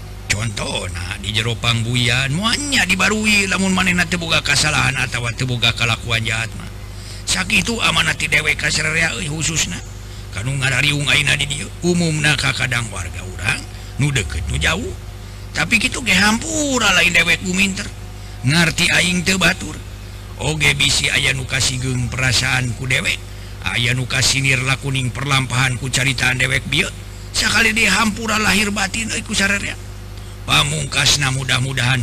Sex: male